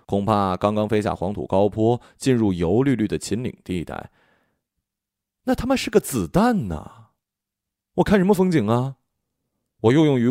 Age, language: 30-49, Chinese